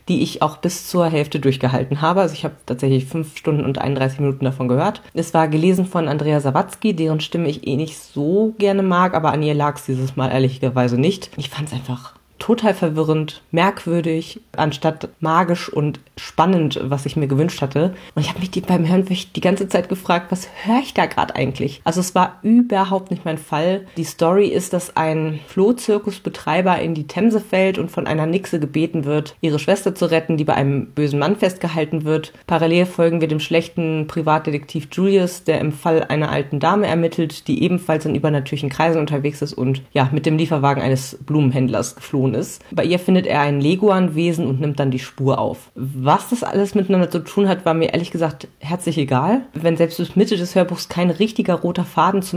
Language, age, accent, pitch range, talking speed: German, 30-49, German, 145-180 Hz, 195 wpm